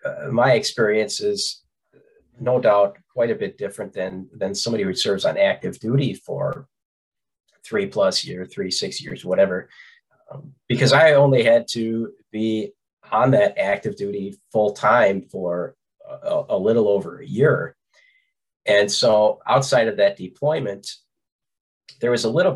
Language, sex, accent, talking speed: English, male, American, 150 wpm